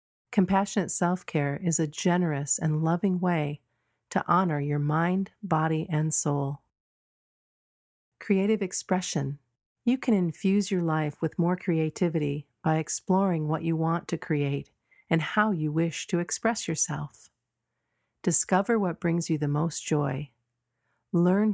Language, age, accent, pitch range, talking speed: English, 50-69, American, 145-180 Hz, 130 wpm